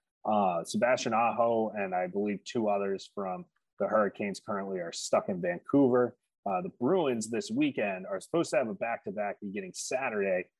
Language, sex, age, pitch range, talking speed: English, male, 30-49, 105-140 Hz, 165 wpm